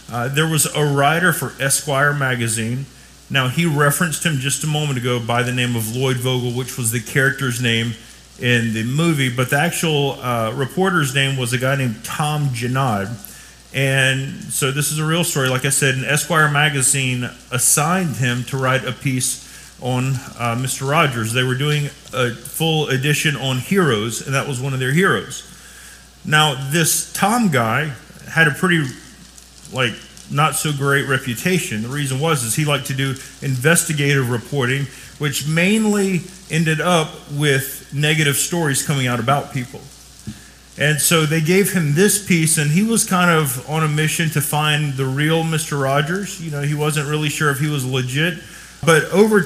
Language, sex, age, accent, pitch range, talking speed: English, male, 40-59, American, 130-160 Hz, 175 wpm